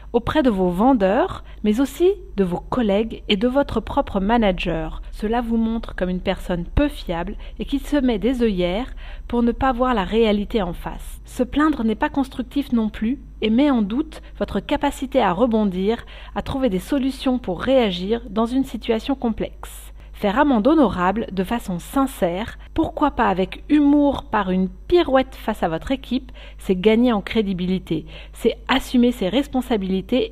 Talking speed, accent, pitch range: 170 wpm, French, 200-265 Hz